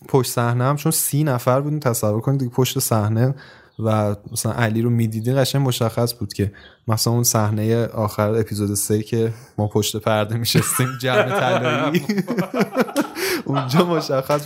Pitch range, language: 115-155 Hz, English